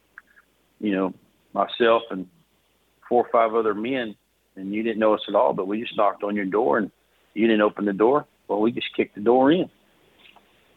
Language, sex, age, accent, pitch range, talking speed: English, male, 50-69, American, 100-115 Hz, 210 wpm